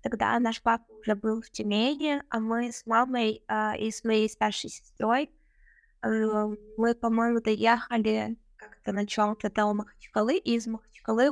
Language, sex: Russian, female